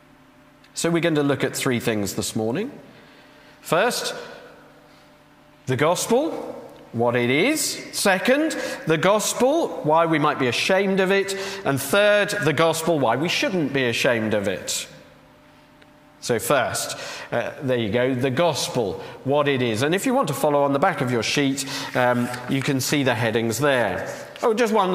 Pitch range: 130-170 Hz